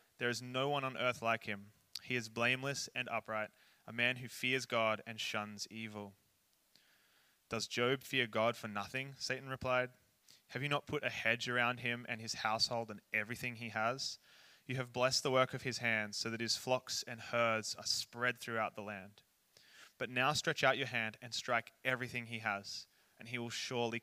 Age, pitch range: 20-39, 110-125 Hz